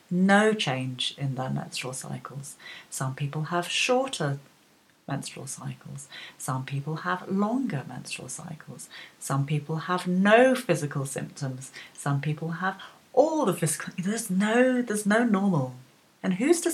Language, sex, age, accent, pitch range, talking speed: English, female, 30-49, British, 140-180 Hz, 135 wpm